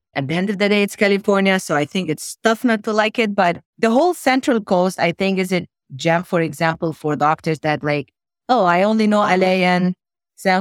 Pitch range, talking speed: 160-195 Hz, 225 wpm